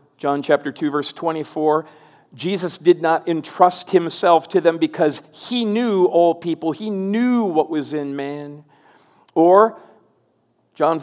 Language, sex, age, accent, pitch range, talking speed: English, male, 50-69, American, 155-205 Hz, 135 wpm